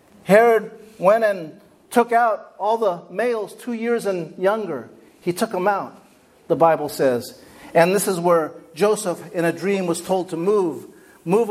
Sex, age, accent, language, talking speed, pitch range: male, 50-69, American, English, 165 wpm, 185-230 Hz